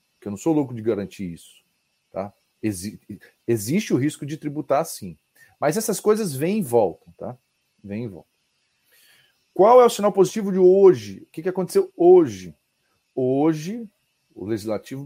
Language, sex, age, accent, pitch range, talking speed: Portuguese, male, 40-59, Brazilian, 110-180 Hz, 160 wpm